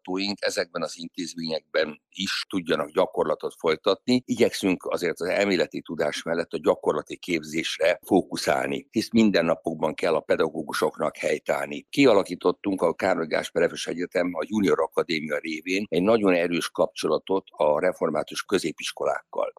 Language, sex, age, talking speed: Hungarian, male, 60-79, 115 wpm